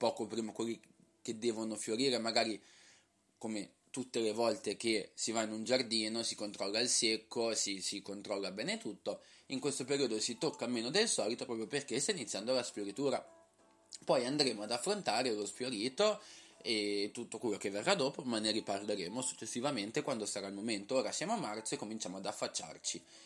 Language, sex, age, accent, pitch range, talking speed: Italian, male, 20-39, native, 105-130 Hz, 175 wpm